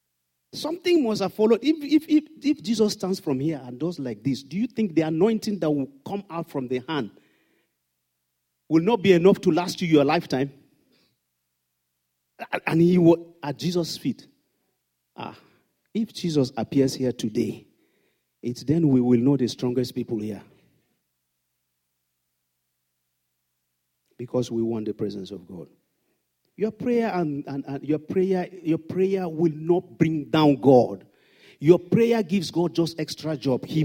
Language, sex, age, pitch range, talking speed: English, male, 50-69, 125-185 Hz, 155 wpm